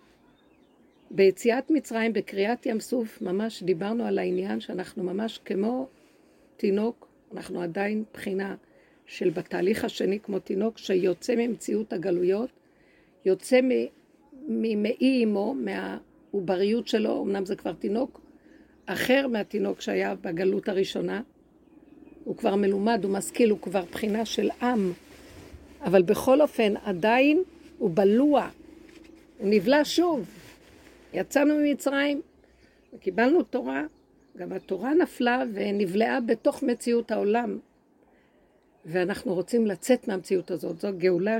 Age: 50-69